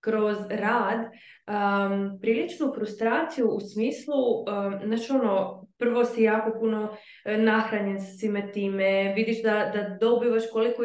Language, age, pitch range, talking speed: Croatian, 20-39, 205-245 Hz, 125 wpm